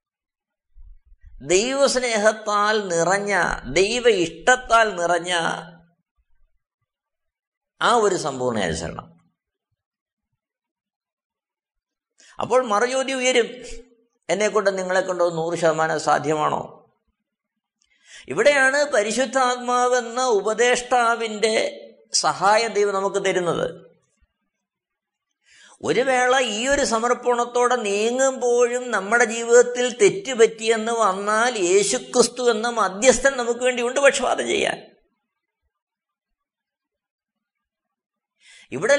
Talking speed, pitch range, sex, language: 65 wpm, 205-250 Hz, male, Malayalam